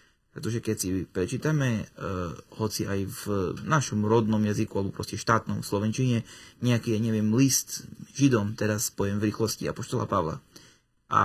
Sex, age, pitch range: male, 30-49, 105-130 Hz